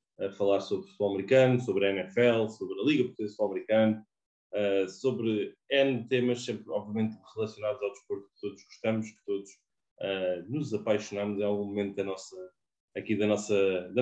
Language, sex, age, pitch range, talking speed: English, male, 20-39, 110-130 Hz, 180 wpm